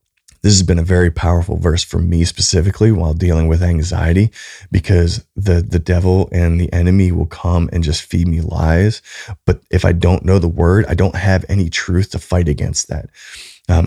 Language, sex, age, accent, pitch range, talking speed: English, male, 20-39, American, 85-95 Hz, 195 wpm